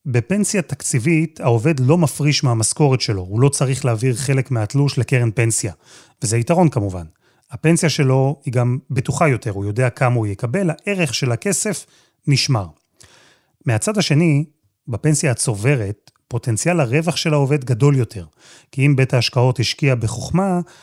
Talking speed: 140 wpm